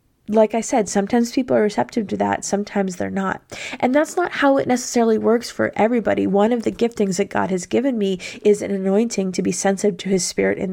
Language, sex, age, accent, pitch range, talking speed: English, female, 20-39, American, 195-235 Hz, 225 wpm